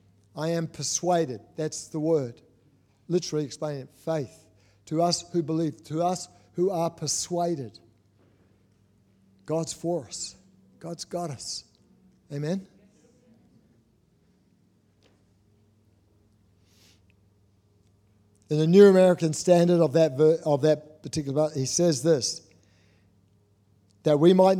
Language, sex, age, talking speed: English, male, 60-79, 105 wpm